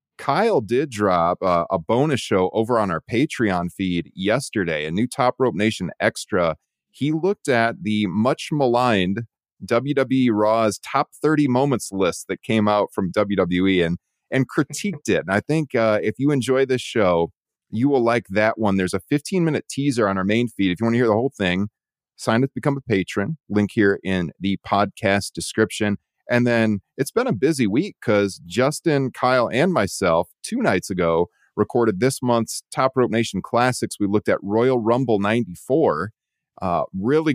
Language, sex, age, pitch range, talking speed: English, male, 30-49, 100-125 Hz, 180 wpm